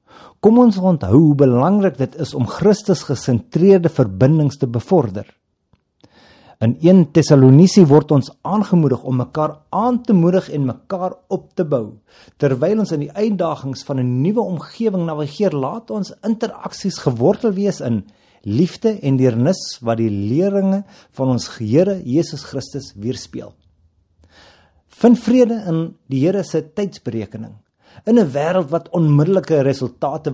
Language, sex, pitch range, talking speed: Dutch, male, 130-185 Hz, 135 wpm